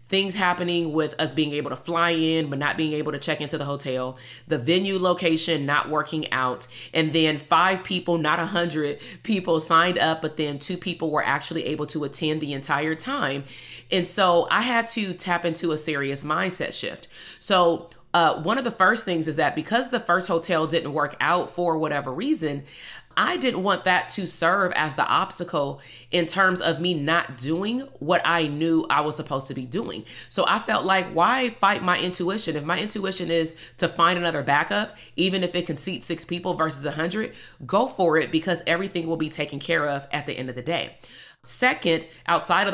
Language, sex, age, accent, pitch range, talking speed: English, female, 30-49, American, 155-180 Hz, 200 wpm